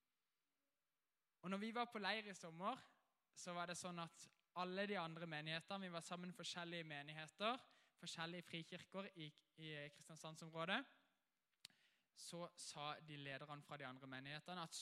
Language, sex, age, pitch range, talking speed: English, male, 20-39, 165-200 Hz, 140 wpm